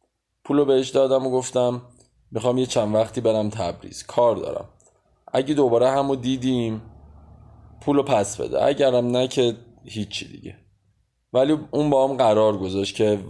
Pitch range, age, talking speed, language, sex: 105-130 Hz, 20-39, 145 wpm, Persian, male